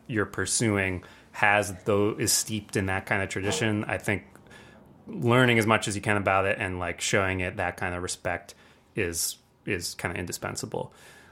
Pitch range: 90-110 Hz